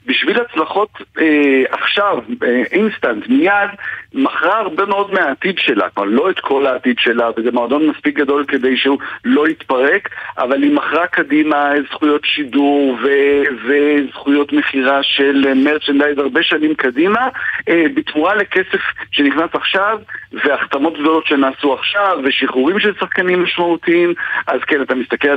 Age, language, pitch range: 50-69, Hebrew, 145-195 Hz